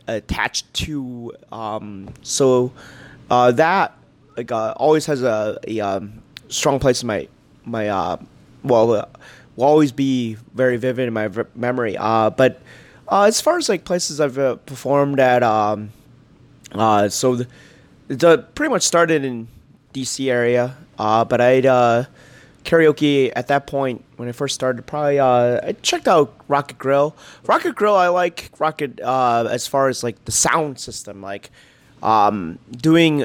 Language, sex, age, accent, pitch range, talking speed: English, male, 20-39, American, 120-150 Hz, 155 wpm